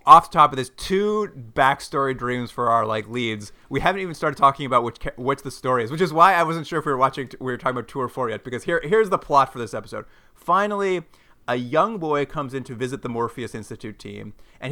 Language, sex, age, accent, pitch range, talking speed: English, male, 30-49, American, 120-170 Hz, 255 wpm